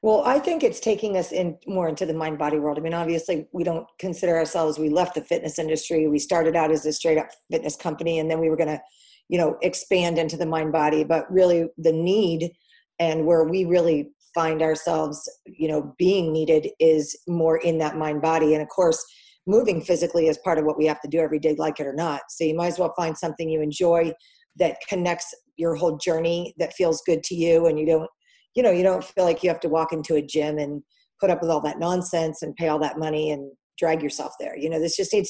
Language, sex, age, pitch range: English, female, 40-59, 160-190 Hz